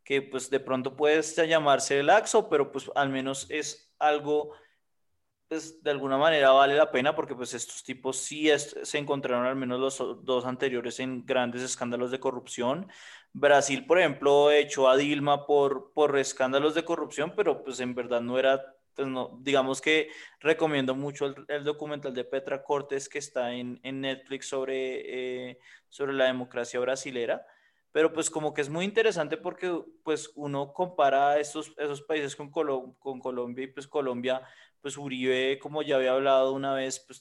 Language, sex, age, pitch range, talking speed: Spanish, male, 20-39, 130-145 Hz, 175 wpm